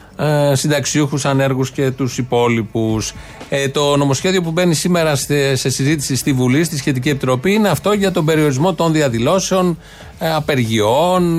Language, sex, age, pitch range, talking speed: Greek, male, 30-49, 125-160 Hz, 140 wpm